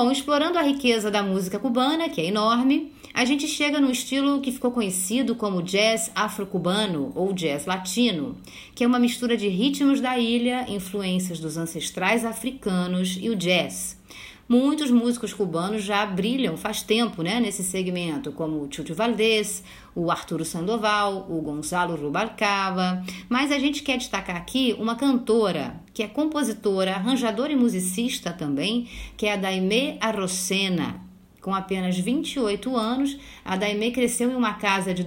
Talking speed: 155 wpm